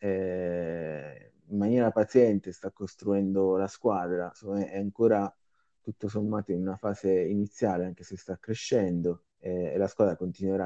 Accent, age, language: native, 20-39, Italian